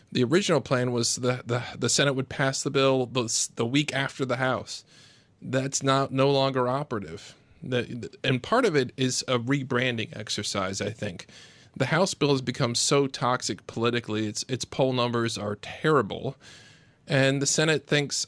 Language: English